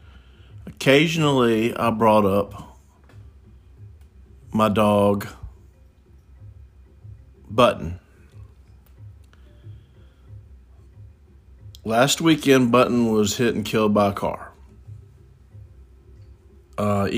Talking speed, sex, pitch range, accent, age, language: 65 wpm, male, 95-110 Hz, American, 50-69, English